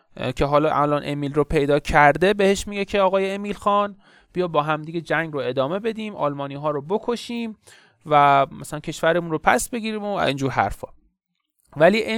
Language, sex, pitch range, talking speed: Persian, male, 135-200 Hz, 170 wpm